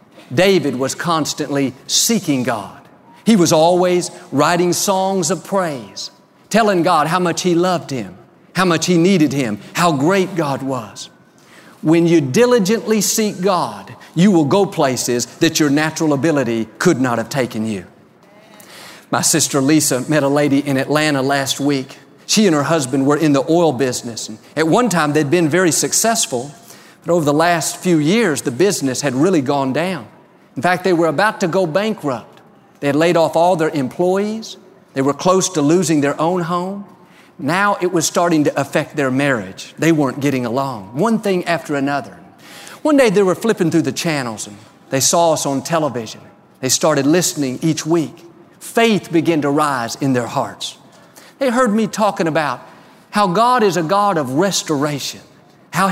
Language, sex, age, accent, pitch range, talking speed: English, male, 50-69, American, 140-185 Hz, 175 wpm